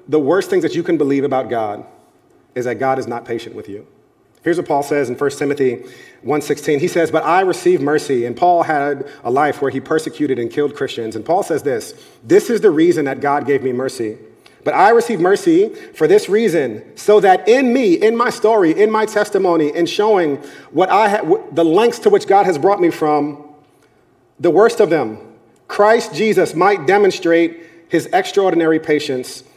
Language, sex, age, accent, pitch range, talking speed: English, male, 40-59, American, 135-210 Hz, 200 wpm